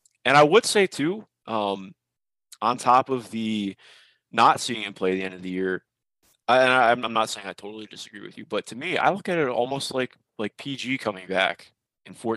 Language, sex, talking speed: English, male, 210 wpm